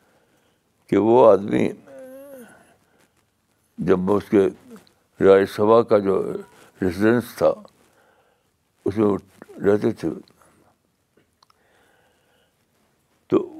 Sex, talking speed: male, 75 wpm